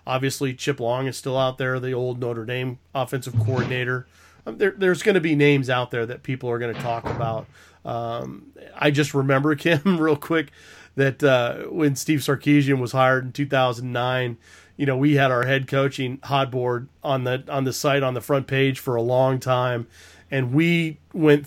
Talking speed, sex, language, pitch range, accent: 195 wpm, male, English, 120-140 Hz, American